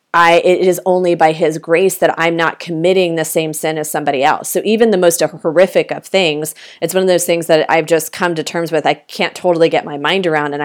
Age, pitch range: 30-49, 160-185 Hz